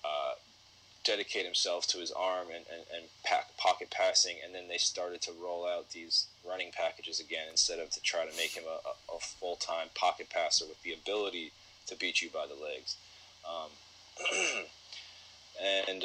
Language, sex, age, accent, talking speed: English, male, 20-39, American, 170 wpm